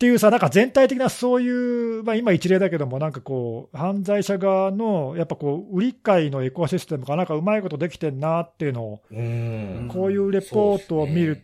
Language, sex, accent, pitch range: Japanese, male, native, 130-205 Hz